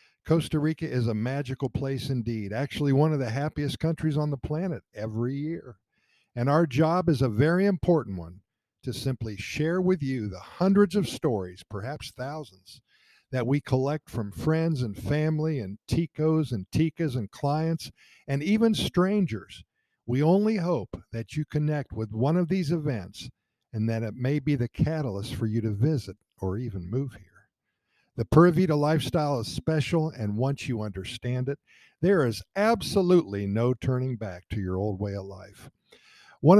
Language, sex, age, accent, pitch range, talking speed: English, male, 50-69, American, 115-160 Hz, 170 wpm